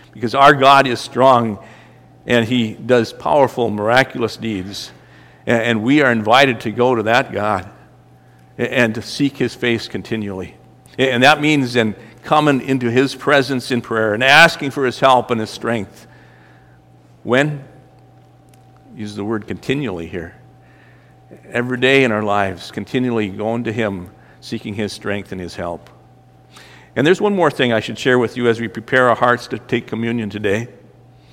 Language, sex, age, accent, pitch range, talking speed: English, male, 50-69, American, 110-135 Hz, 160 wpm